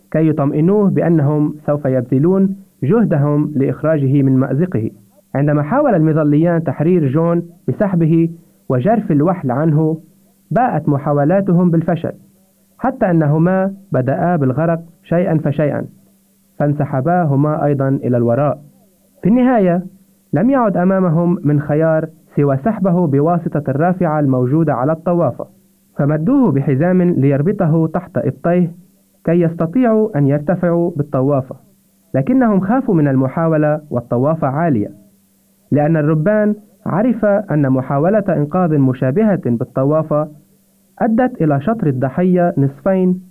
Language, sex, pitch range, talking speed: Arabic, male, 145-190 Hz, 105 wpm